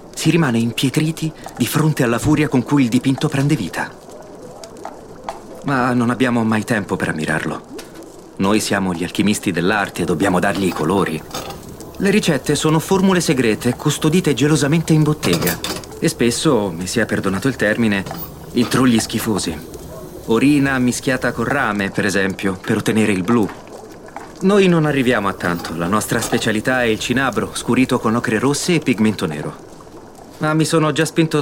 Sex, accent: male, native